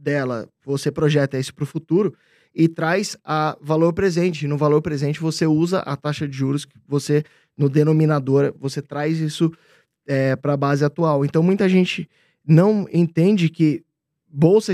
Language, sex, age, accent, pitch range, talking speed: Portuguese, male, 20-39, Brazilian, 140-170 Hz, 160 wpm